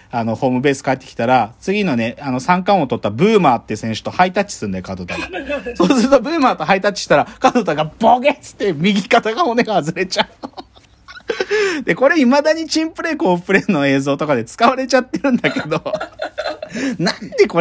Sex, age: male, 40-59